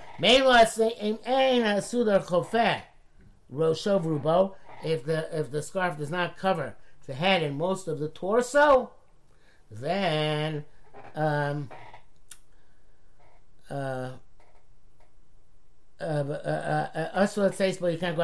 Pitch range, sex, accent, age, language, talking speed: 155-200 Hz, male, American, 60-79, English, 70 wpm